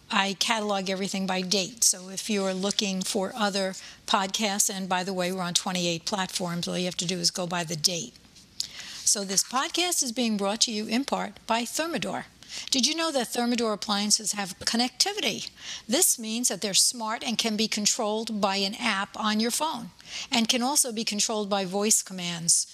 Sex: female